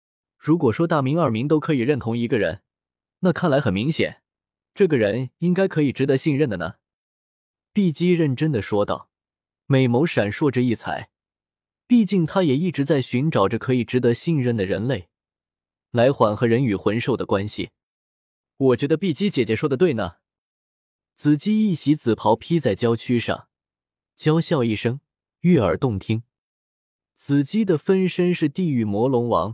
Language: Chinese